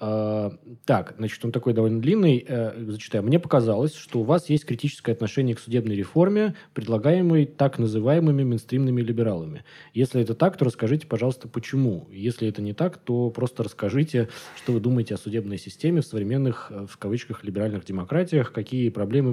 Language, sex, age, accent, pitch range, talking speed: Russian, male, 20-39, native, 105-140 Hz, 160 wpm